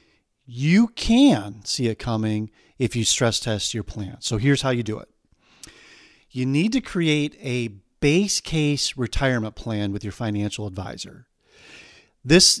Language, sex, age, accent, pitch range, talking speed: English, male, 40-59, American, 110-150 Hz, 150 wpm